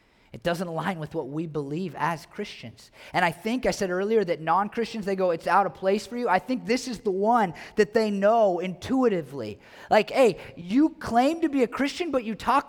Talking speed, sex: 220 wpm, male